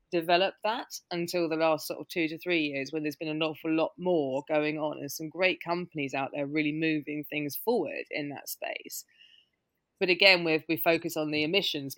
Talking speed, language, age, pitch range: 200 wpm, English, 20-39, 150-180 Hz